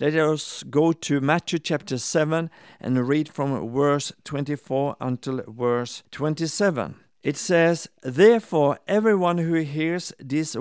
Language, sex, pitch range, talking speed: English, male, 145-190 Hz, 125 wpm